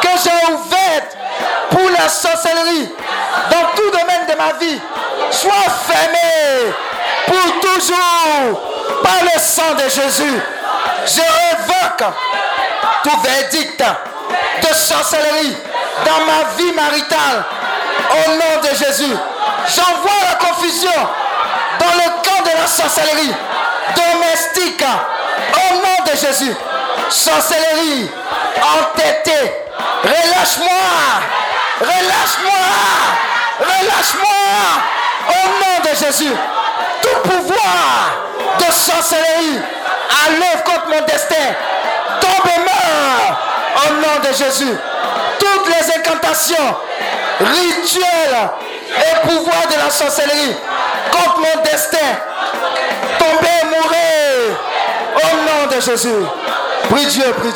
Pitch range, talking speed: 300-355 Hz, 100 wpm